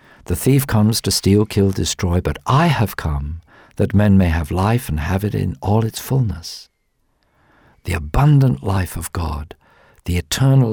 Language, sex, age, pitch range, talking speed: English, male, 50-69, 95-130 Hz, 170 wpm